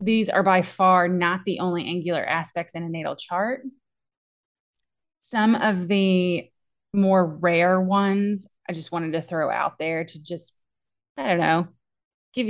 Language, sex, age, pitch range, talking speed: English, female, 20-39, 170-190 Hz, 155 wpm